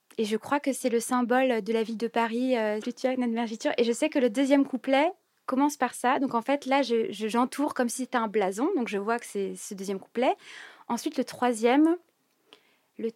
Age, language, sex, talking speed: 20-39, French, female, 210 wpm